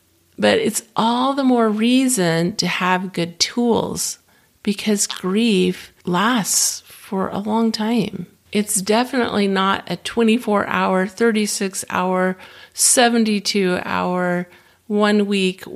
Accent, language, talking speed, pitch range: American, English, 95 wpm, 175-220 Hz